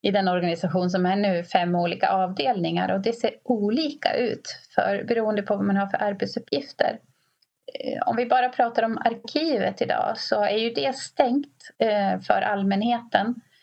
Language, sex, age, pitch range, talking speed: Swedish, female, 30-49, 190-235 Hz, 160 wpm